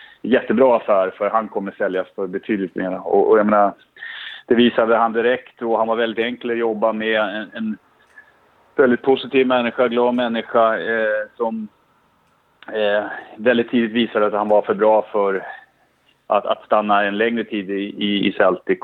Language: Swedish